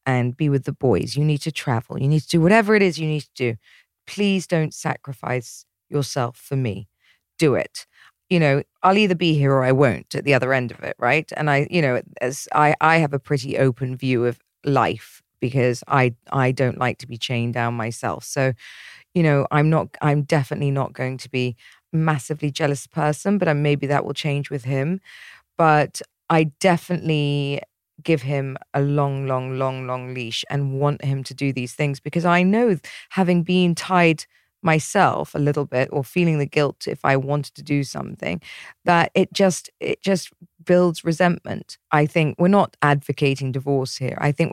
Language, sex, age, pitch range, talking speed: English, female, 40-59, 130-160 Hz, 195 wpm